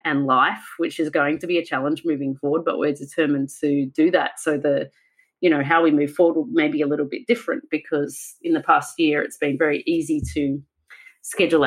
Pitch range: 145-195 Hz